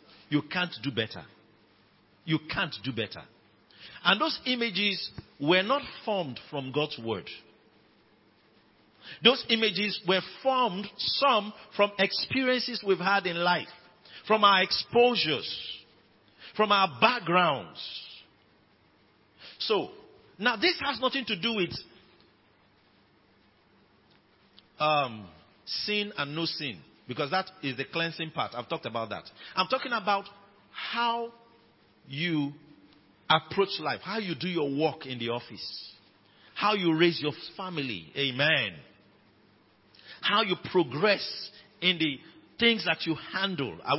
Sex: male